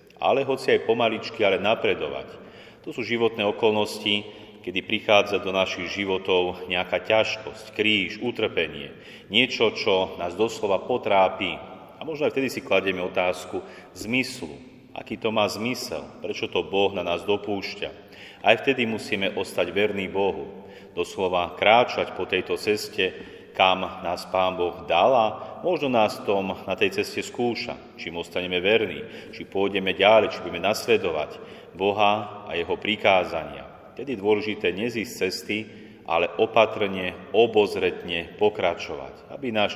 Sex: male